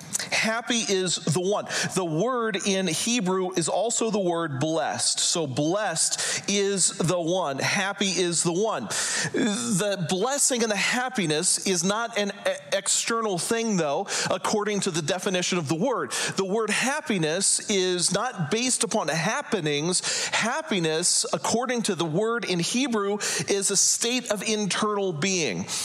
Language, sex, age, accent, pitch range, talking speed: English, male, 40-59, American, 175-220 Hz, 140 wpm